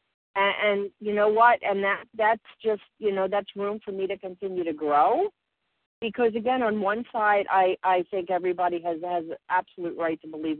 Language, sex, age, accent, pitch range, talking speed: English, female, 50-69, American, 165-195 Hz, 185 wpm